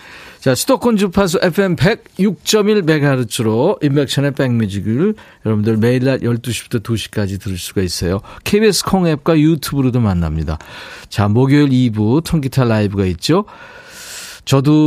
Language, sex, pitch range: Korean, male, 110-165 Hz